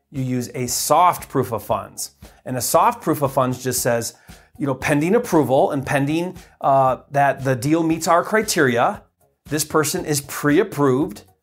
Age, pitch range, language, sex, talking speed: 30-49, 125-165 Hz, English, male, 170 wpm